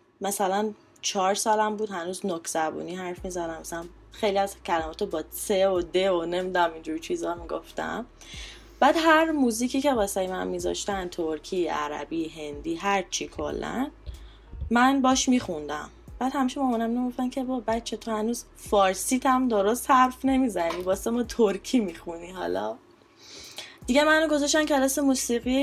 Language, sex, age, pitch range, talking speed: Persian, female, 10-29, 190-255 Hz, 145 wpm